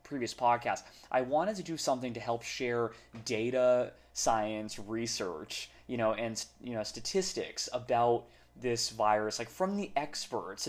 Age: 20-39